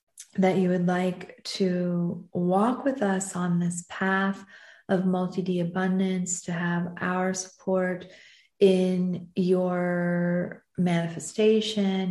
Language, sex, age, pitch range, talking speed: English, female, 30-49, 175-195 Hz, 110 wpm